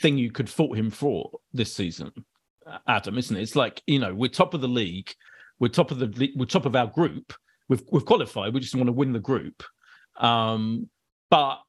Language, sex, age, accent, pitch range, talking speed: English, male, 40-59, British, 115-150 Hz, 210 wpm